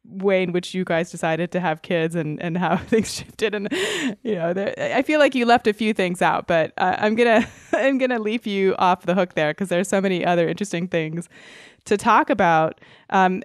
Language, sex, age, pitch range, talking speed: English, female, 20-39, 170-220 Hz, 230 wpm